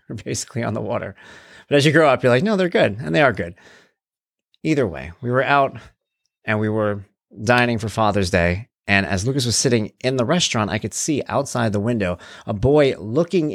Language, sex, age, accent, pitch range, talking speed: English, male, 30-49, American, 110-155 Hz, 215 wpm